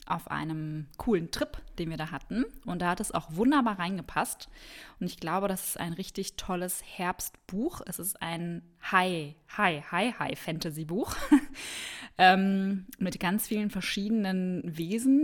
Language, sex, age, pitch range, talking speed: German, female, 20-39, 170-215 Hz, 155 wpm